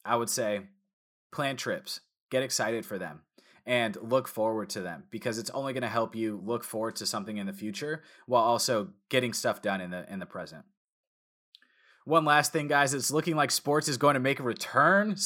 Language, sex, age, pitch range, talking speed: English, male, 20-39, 105-140 Hz, 205 wpm